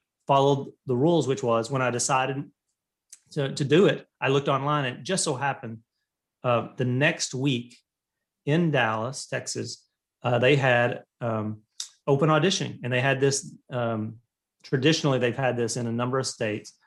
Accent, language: American, English